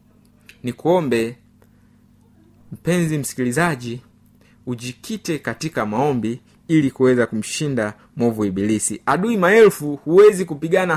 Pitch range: 120-170 Hz